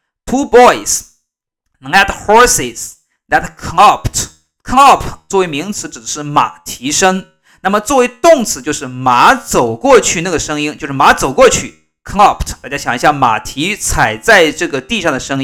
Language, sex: Chinese, male